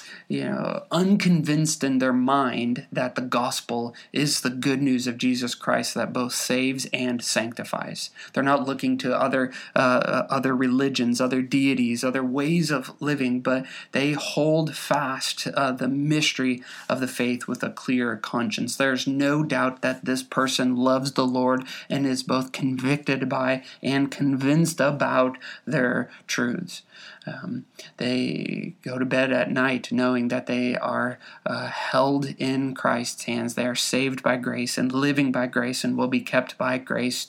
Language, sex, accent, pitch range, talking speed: English, male, American, 130-155 Hz, 160 wpm